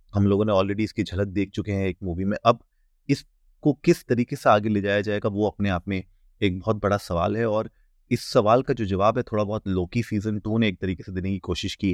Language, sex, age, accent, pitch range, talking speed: Hindi, male, 30-49, native, 100-115 Hz, 250 wpm